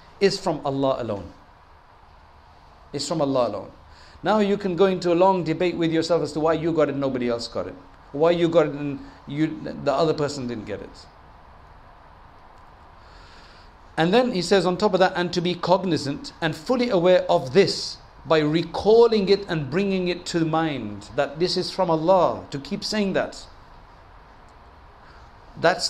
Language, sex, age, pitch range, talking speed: English, male, 50-69, 130-175 Hz, 175 wpm